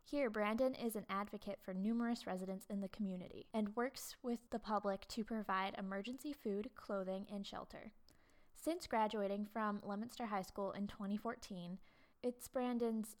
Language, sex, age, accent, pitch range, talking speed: English, female, 10-29, American, 205-235 Hz, 150 wpm